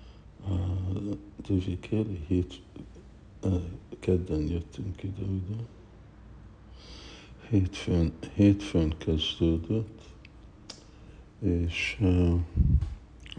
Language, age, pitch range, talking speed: Hungarian, 60-79, 85-100 Hz, 50 wpm